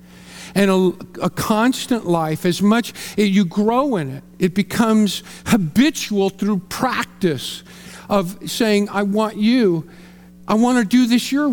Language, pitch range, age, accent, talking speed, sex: English, 180-245 Hz, 50-69, American, 145 wpm, male